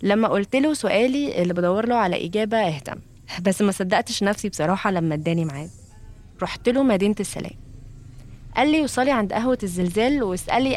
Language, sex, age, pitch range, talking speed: Arabic, female, 20-39, 165-215 Hz, 155 wpm